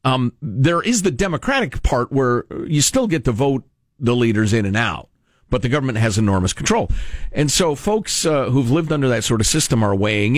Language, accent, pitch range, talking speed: English, American, 105-155 Hz, 210 wpm